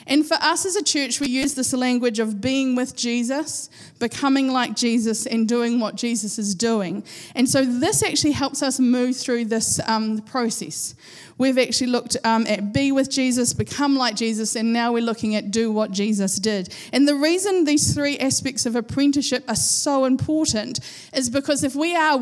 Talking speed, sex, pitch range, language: 190 wpm, female, 215-270 Hz, English